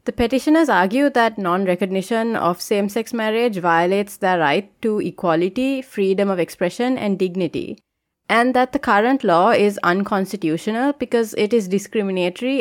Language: English